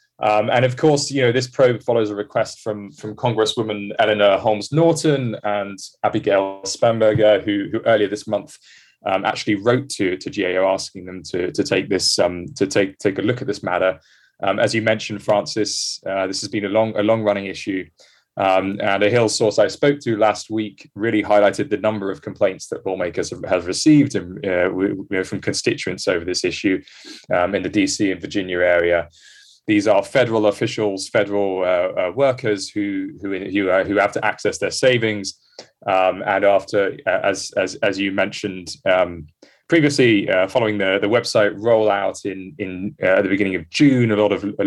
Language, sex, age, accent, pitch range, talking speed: English, male, 20-39, British, 95-115 Hz, 185 wpm